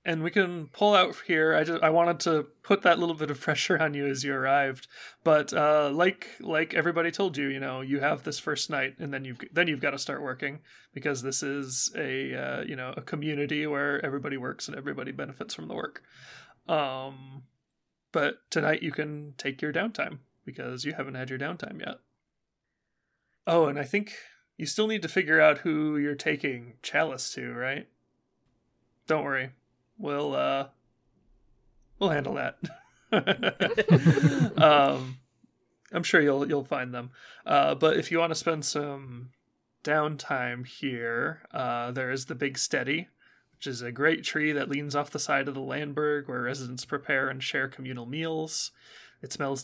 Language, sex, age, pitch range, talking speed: English, male, 20-39, 135-160 Hz, 175 wpm